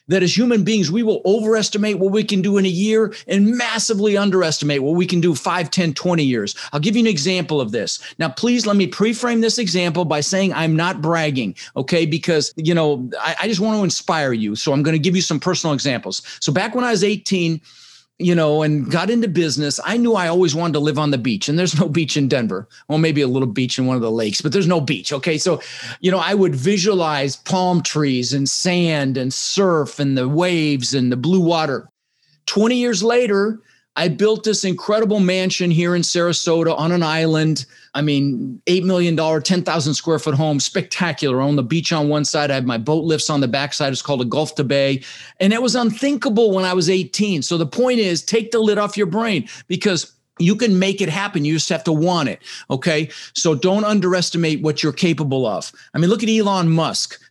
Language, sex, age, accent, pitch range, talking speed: English, male, 40-59, American, 150-195 Hz, 225 wpm